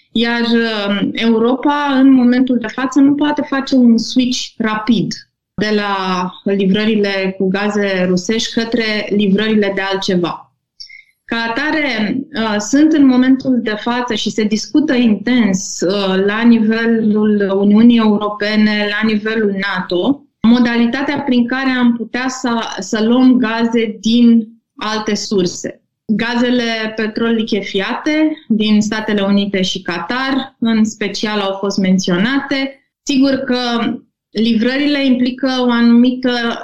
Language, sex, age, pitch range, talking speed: Romanian, female, 20-39, 210-250 Hz, 115 wpm